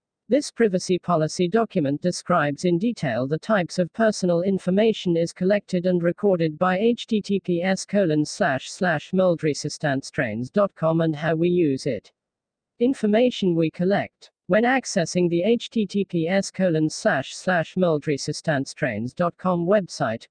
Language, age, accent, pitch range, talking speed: English, 50-69, British, 165-200 Hz, 110 wpm